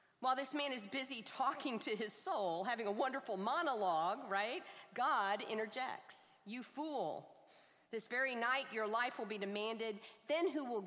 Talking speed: 160 wpm